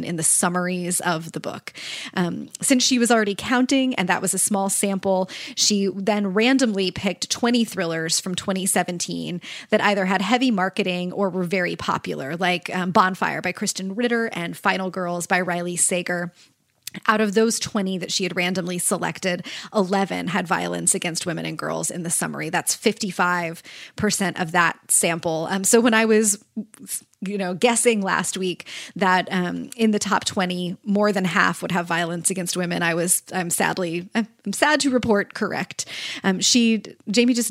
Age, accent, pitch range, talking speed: 20-39, American, 180-220 Hz, 175 wpm